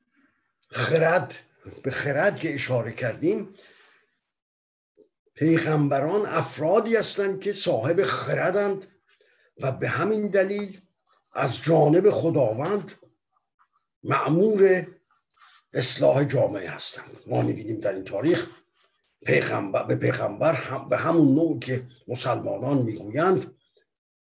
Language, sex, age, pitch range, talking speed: Persian, male, 50-69, 140-205 Hz, 95 wpm